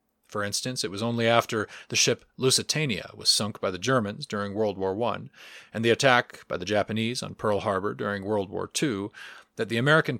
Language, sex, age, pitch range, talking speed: English, male, 30-49, 105-140 Hz, 200 wpm